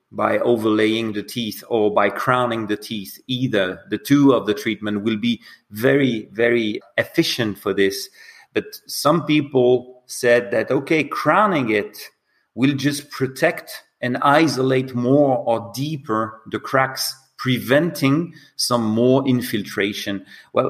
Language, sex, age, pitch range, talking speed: English, male, 40-59, 110-145 Hz, 130 wpm